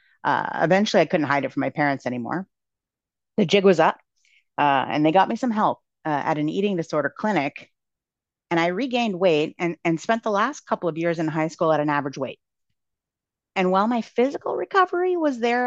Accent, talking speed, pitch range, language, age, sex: American, 205 wpm, 150-205 Hz, English, 30-49, female